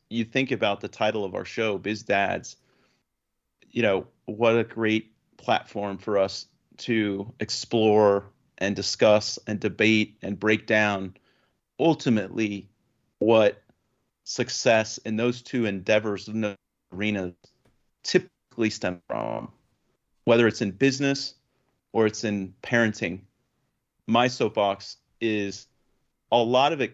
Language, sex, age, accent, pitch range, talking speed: English, male, 30-49, American, 100-115 Hz, 120 wpm